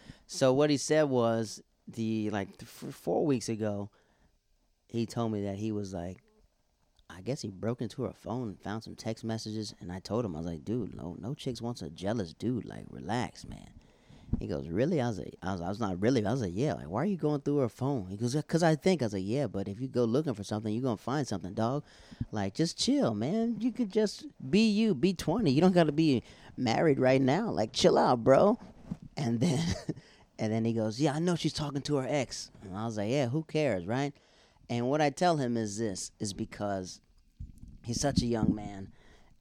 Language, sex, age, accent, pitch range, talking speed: English, male, 30-49, American, 105-140 Hz, 235 wpm